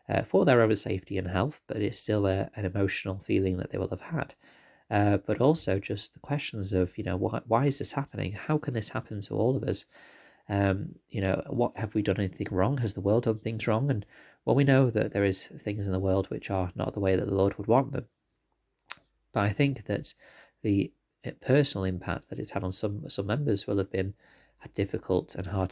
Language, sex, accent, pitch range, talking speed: English, male, British, 95-115 Hz, 230 wpm